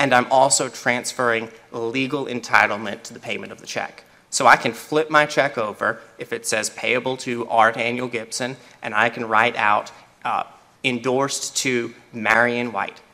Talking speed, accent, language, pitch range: 170 wpm, American, English, 115-130 Hz